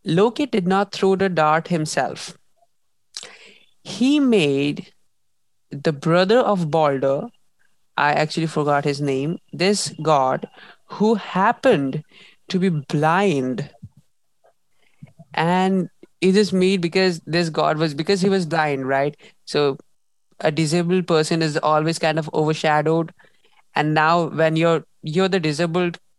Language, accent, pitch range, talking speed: English, Indian, 155-195 Hz, 125 wpm